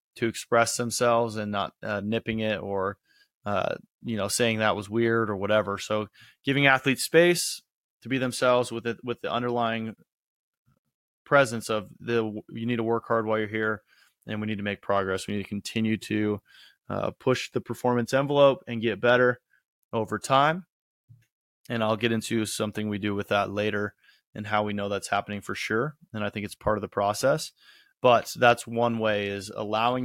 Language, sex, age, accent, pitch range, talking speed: English, male, 20-39, American, 105-115 Hz, 190 wpm